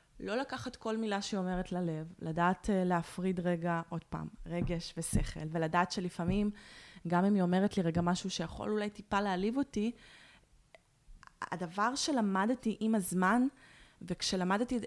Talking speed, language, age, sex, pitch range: 135 wpm, Hebrew, 20-39, female, 175-225 Hz